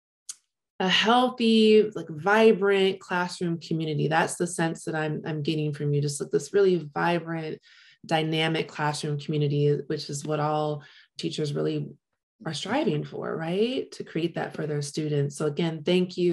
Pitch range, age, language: 155-195 Hz, 20-39, English